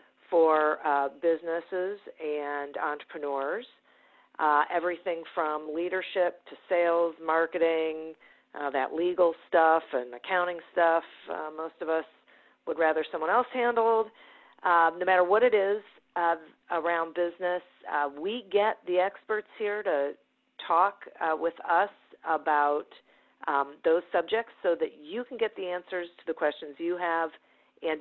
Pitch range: 160-215 Hz